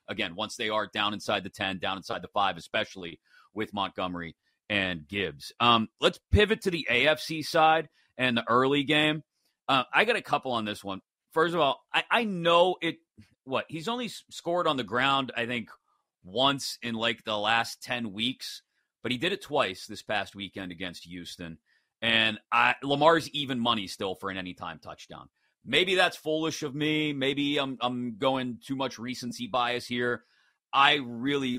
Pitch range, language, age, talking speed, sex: 110-145 Hz, English, 30-49, 180 wpm, male